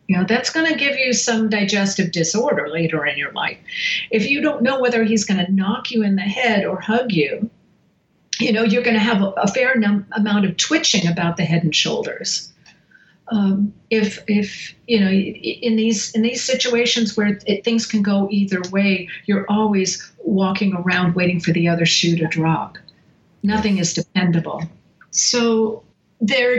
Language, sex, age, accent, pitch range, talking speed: English, female, 50-69, American, 185-220 Hz, 180 wpm